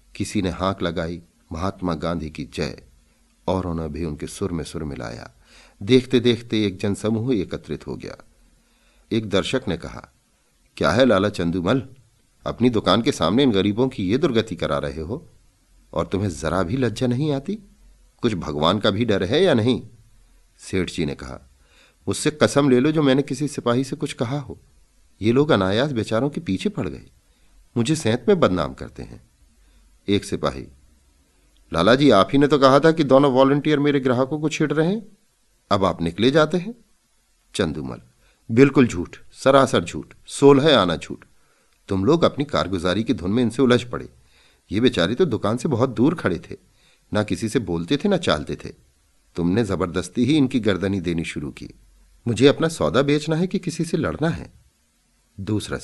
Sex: male